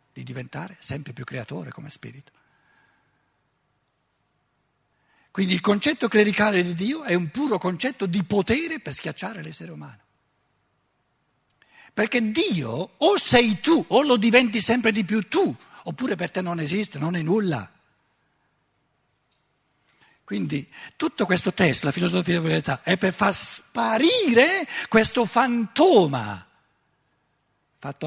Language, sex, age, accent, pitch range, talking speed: Italian, male, 60-79, native, 135-200 Hz, 125 wpm